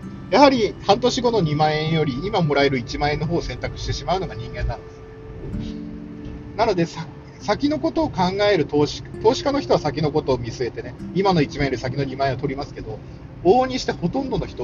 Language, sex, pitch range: Japanese, male, 120-170 Hz